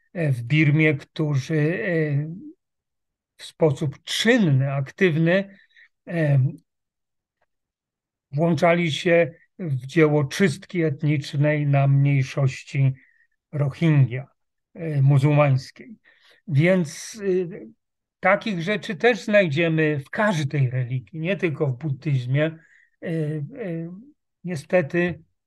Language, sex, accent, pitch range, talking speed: Polish, male, native, 140-170 Hz, 70 wpm